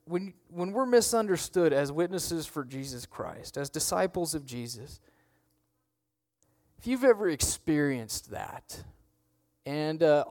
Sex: male